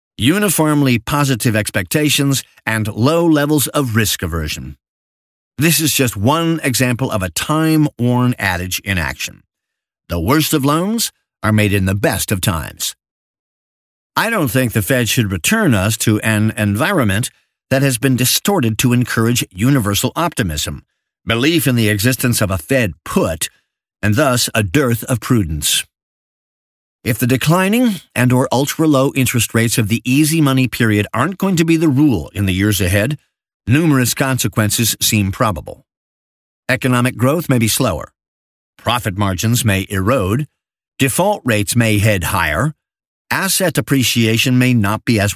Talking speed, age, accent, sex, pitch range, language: 145 wpm, 50-69, American, male, 105-135 Hz, English